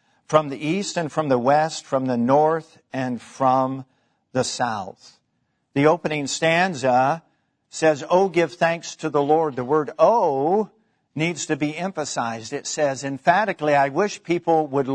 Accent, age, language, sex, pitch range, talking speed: American, 50-69, English, male, 135-170 Hz, 155 wpm